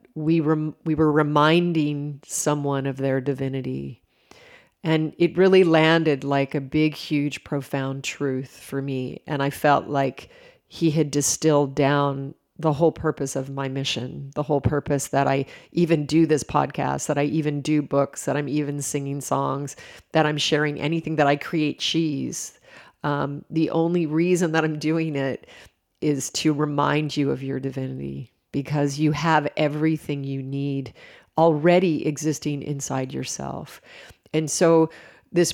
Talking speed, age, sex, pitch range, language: 150 wpm, 30-49, female, 140-160 Hz, English